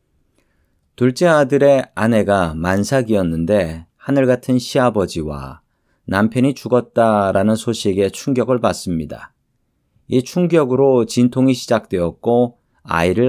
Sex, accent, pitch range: male, native, 95-125 Hz